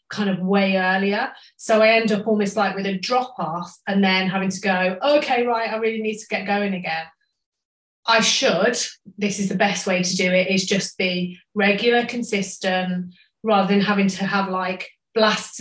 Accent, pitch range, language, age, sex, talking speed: British, 185-215 Hz, English, 30-49, female, 190 wpm